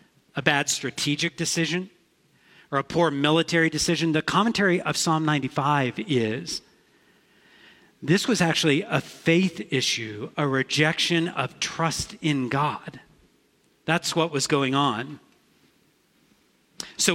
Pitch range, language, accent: 145-180 Hz, English, American